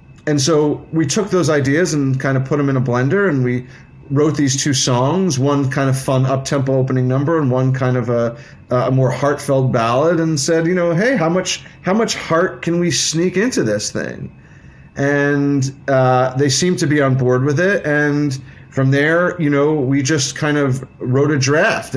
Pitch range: 130-160 Hz